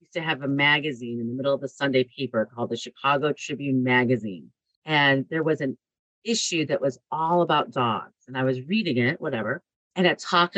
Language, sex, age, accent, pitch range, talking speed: English, female, 40-59, American, 130-175 Hz, 205 wpm